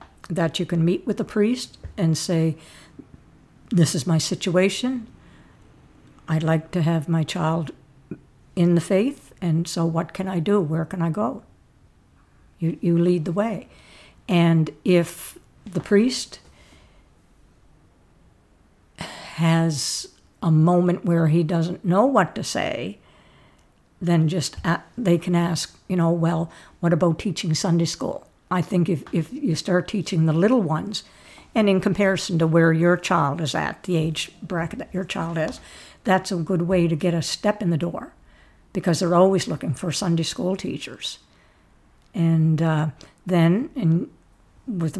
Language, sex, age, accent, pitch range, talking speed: English, female, 60-79, American, 160-185 Hz, 150 wpm